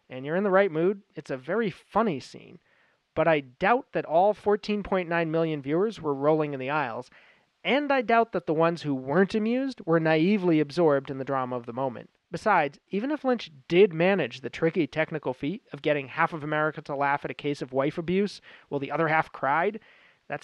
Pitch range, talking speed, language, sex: 140-180 Hz, 210 wpm, English, male